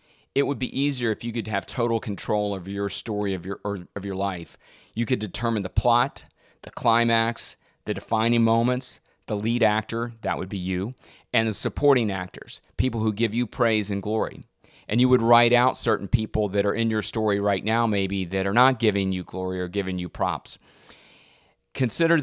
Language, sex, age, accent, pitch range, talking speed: English, male, 30-49, American, 100-120 Hz, 195 wpm